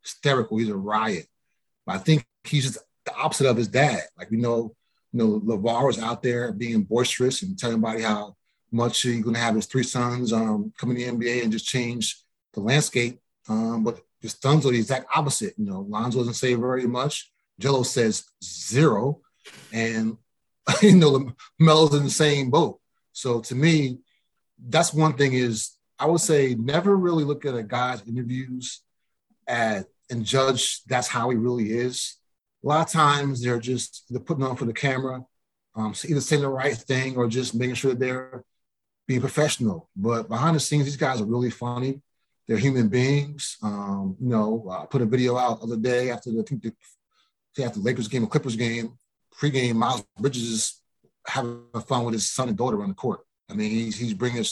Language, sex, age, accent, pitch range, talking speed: English, male, 30-49, American, 115-140 Hz, 195 wpm